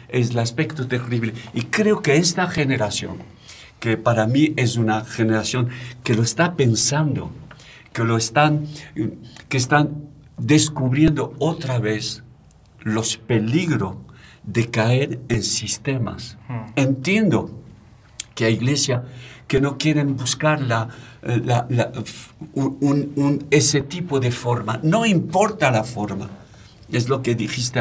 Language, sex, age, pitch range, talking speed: Spanish, male, 60-79, 110-150 Hz, 115 wpm